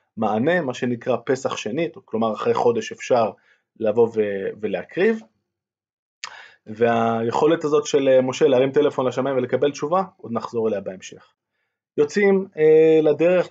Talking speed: 120 wpm